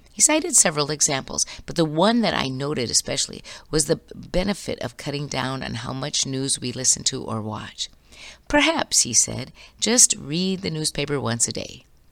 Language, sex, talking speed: English, female, 180 wpm